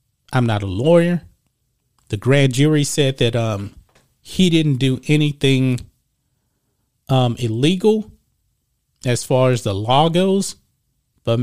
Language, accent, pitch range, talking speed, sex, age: English, American, 115-145 Hz, 120 wpm, male, 30-49